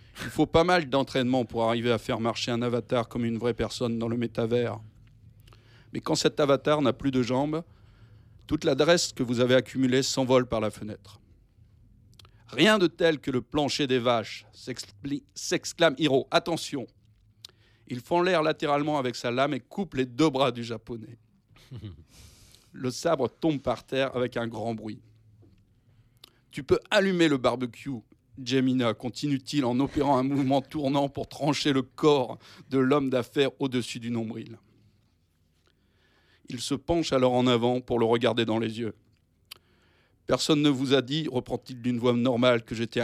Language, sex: English, male